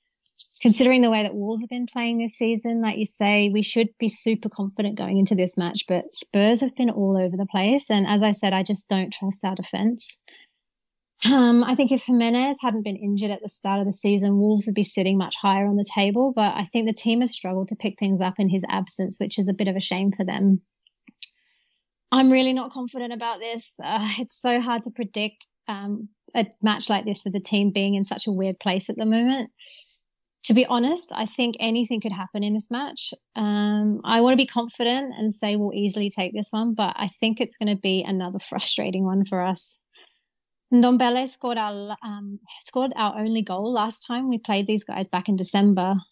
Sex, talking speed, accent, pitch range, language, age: female, 215 wpm, Australian, 200-240 Hz, English, 30-49